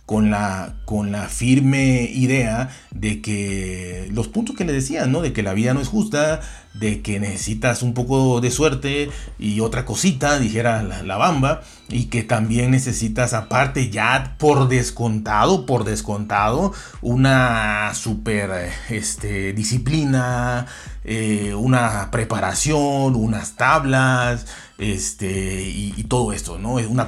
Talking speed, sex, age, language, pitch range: 135 wpm, male, 40-59, Spanish, 105-135 Hz